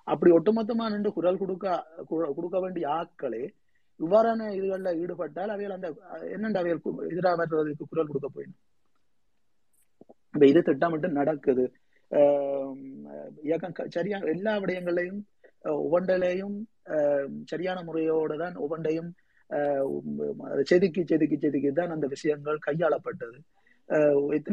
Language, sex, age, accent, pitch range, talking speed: Tamil, male, 30-49, native, 140-180 Hz, 90 wpm